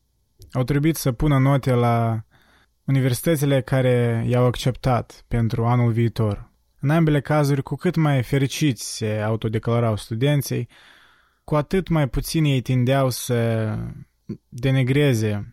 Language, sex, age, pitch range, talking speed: Romanian, male, 20-39, 115-145 Hz, 120 wpm